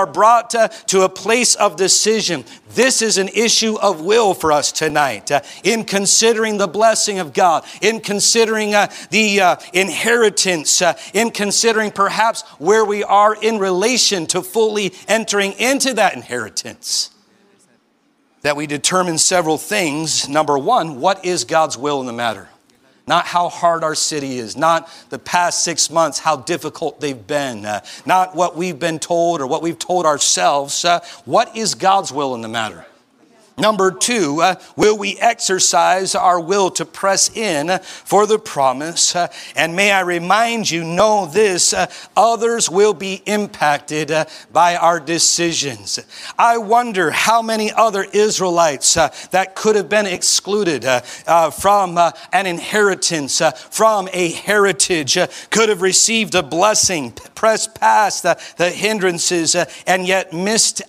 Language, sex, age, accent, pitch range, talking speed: English, male, 50-69, American, 165-215 Hz, 160 wpm